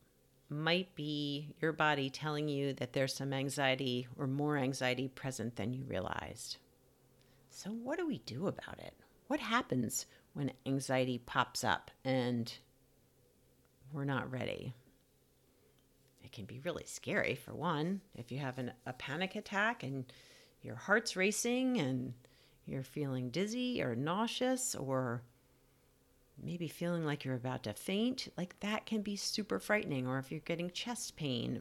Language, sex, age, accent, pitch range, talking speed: English, female, 50-69, American, 130-185 Hz, 145 wpm